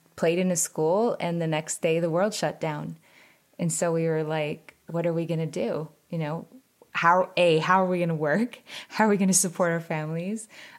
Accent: American